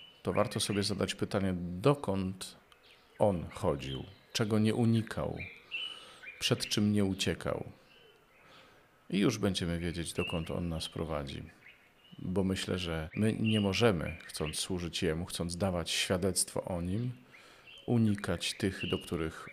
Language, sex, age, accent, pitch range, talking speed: Polish, male, 40-59, native, 85-100 Hz, 125 wpm